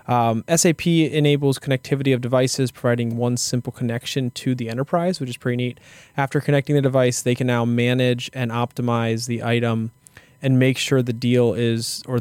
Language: English